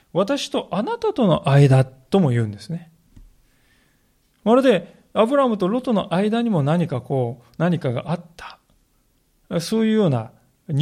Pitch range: 130-195 Hz